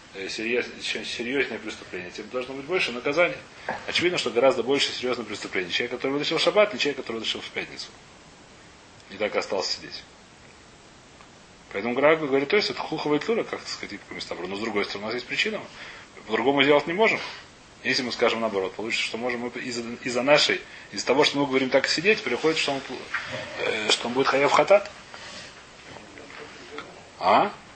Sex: male